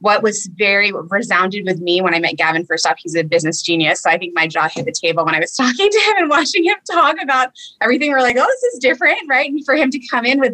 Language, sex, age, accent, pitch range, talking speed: English, female, 20-39, American, 185-250 Hz, 285 wpm